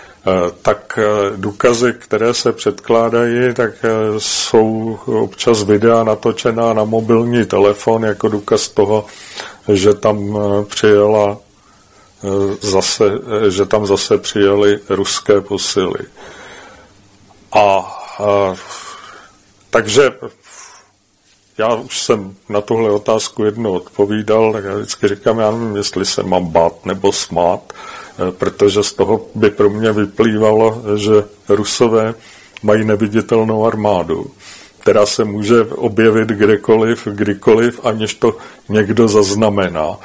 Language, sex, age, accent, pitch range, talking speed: English, male, 40-59, Czech, 100-115 Hz, 105 wpm